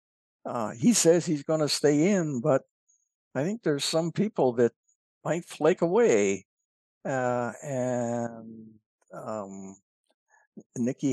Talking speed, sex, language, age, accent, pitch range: 120 wpm, male, English, 60-79, American, 110-140 Hz